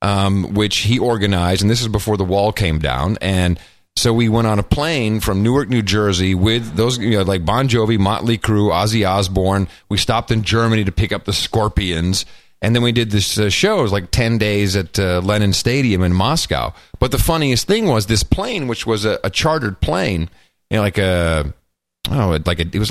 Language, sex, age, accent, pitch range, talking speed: English, male, 40-59, American, 95-135 Hz, 215 wpm